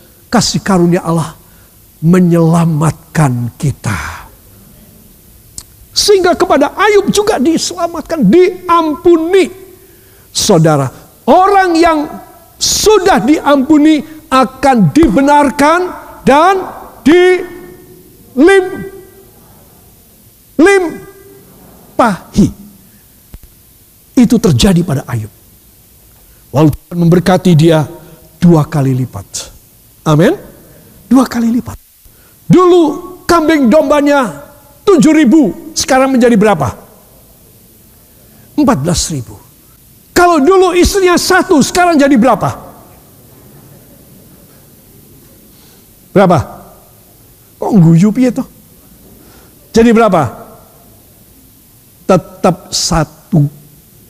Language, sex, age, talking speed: Indonesian, male, 50-69, 65 wpm